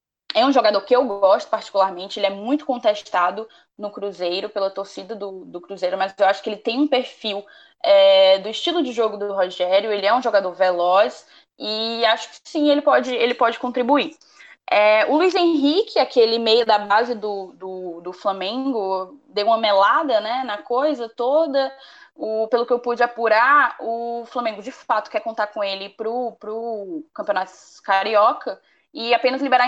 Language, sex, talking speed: Portuguese, female, 165 wpm